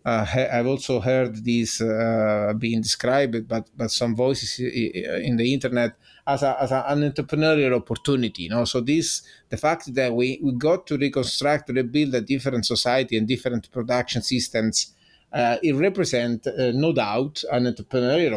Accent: Italian